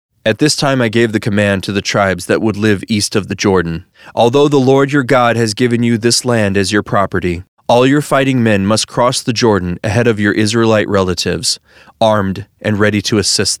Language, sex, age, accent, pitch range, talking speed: English, male, 30-49, American, 95-120 Hz, 210 wpm